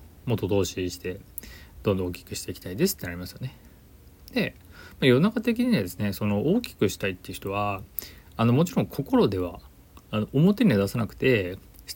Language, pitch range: Japanese, 90-125 Hz